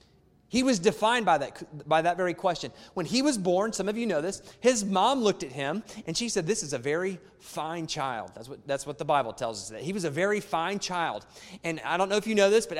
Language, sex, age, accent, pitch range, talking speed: English, male, 30-49, American, 165-200 Hz, 265 wpm